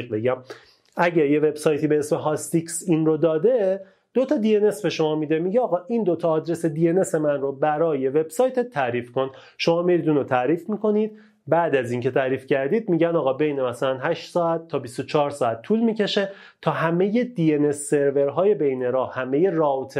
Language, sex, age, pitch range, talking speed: Persian, male, 30-49, 130-185 Hz, 165 wpm